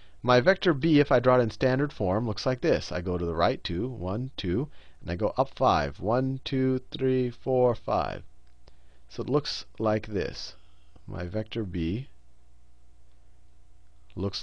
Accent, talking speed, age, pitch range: American, 165 wpm, 40-59, 95-150 Hz